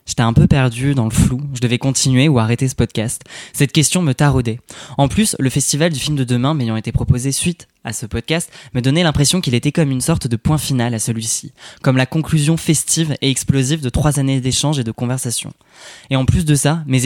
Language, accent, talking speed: French, French, 230 wpm